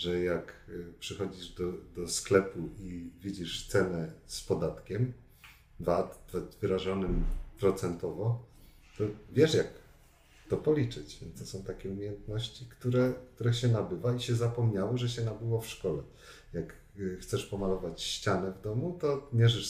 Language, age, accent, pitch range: Polish, 40-59, native, 90-120 Hz